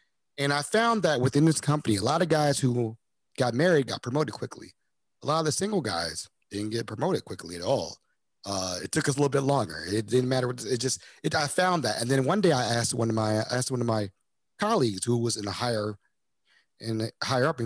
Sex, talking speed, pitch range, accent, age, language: male, 245 wpm, 110-150 Hz, American, 30-49, English